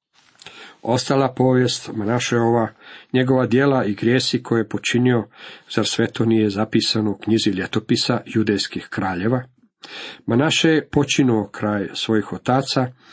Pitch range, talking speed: 105-130 Hz, 120 wpm